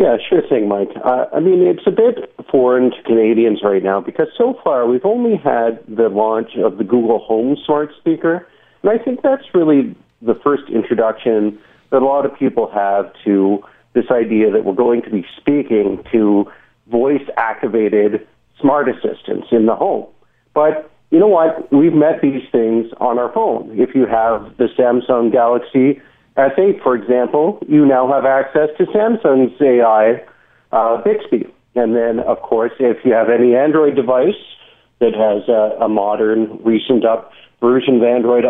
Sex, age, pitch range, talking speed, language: male, 50-69, 115-160 Hz, 165 wpm, English